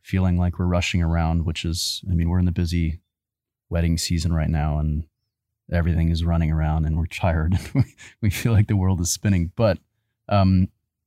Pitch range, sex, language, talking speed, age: 85-100 Hz, male, English, 185 wpm, 30-49